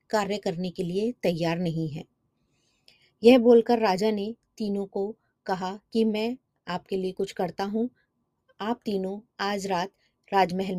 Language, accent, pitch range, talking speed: Hindi, native, 180-235 Hz, 145 wpm